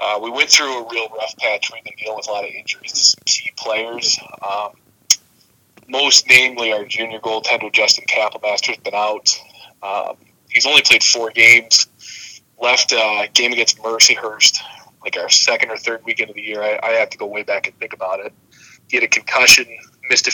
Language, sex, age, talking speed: English, male, 20-39, 200 wpm